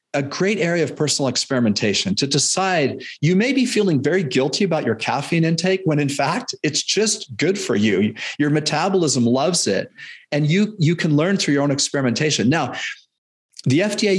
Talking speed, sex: 180 wpm, male